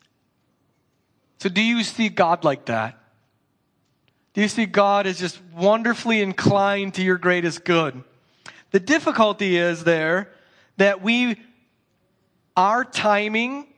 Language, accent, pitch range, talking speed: English, American, 150-195 Hz, 120 wpm